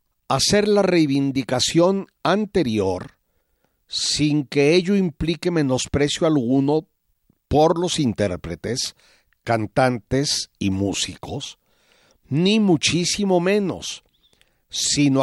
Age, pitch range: 50-69, 120-170 Hz